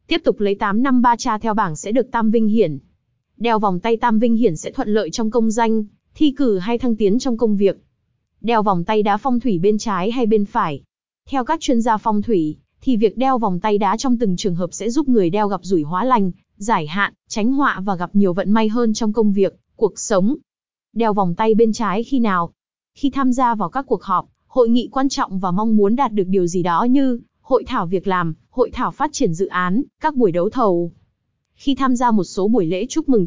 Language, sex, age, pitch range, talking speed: Vietnamese, female, 20-39, 200-250 Hz, 240 wpm